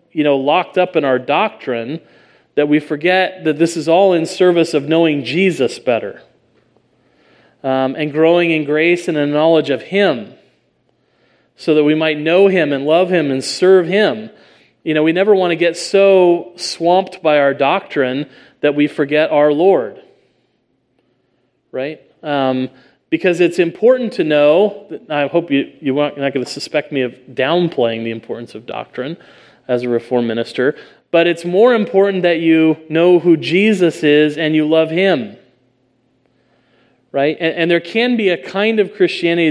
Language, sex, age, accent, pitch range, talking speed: English, male, 40-59, American, 145-180 Hz, 170 wpm